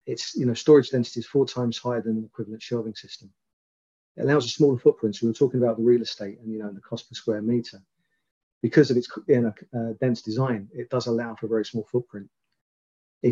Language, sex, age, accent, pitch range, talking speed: English, male, 40-59, British, 110-125 Hz, 220 wpm